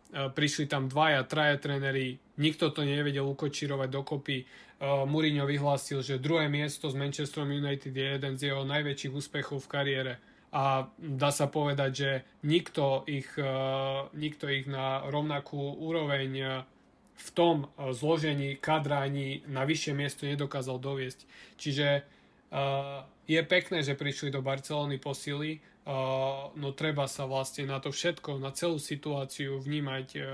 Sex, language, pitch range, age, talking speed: male, Slovak, 135-150 Hz, 20-39, 145 wpm